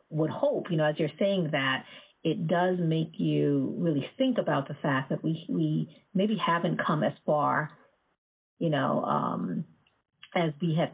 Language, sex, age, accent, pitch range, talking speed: English, female, 40-59, American, 140-175 Hz, 170 wpm